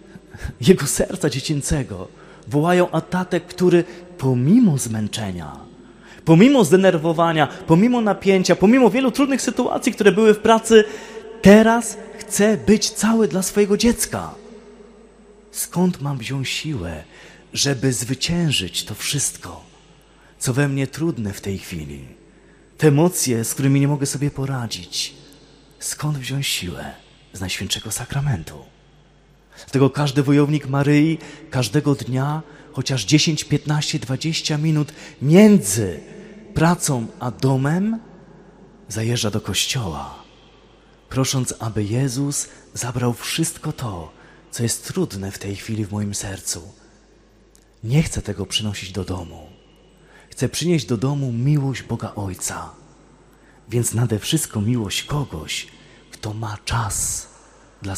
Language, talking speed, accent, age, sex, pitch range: Polish, 115 wpm, native, 30-49, male, 115-180 Hz